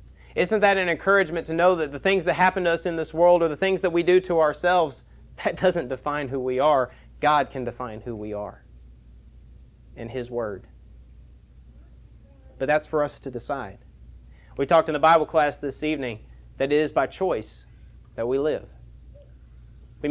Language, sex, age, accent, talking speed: English, male, 30-49, American, 185 wpm